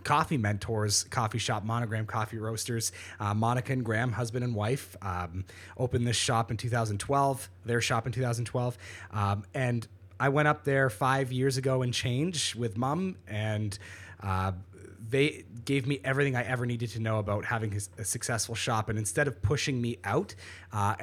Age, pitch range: 30-49, 105-130 Hz